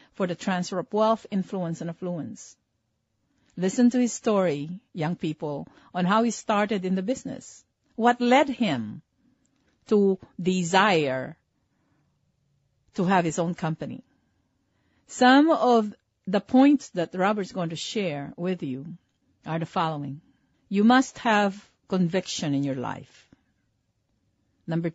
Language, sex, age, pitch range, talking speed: English, female, 50-69, 160-230 Hz, 125 wpm